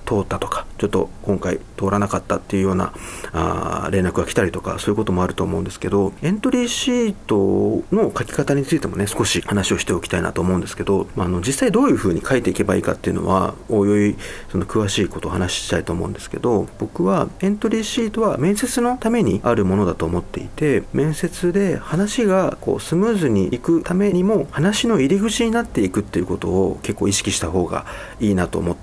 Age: 40-59